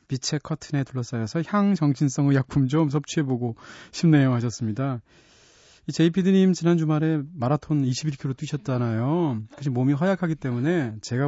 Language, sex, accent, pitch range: Korean, male, native, 125-165 Hz